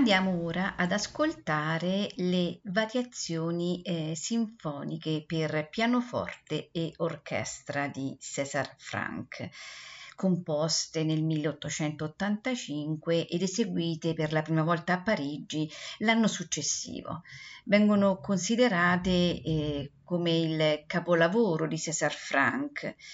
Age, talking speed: 50-69, 95 wpm